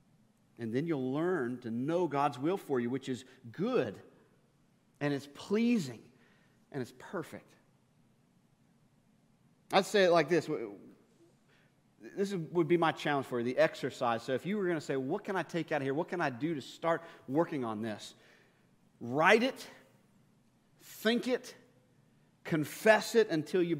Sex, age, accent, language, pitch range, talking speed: male, 40-59, American, English, 140-185 Hz, 160 wpm